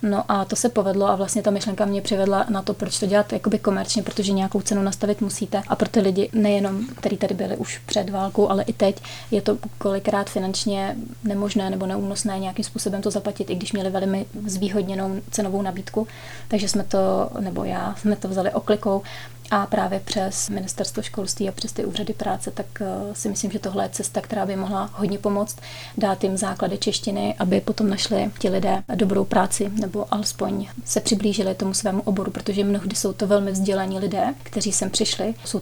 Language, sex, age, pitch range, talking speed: Czech, female, 30-49, 195-210 Hz, 190 wpm